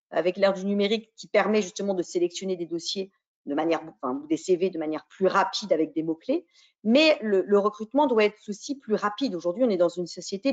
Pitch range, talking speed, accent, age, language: 190-255 Hz, 210 wpm, French, 40-59, French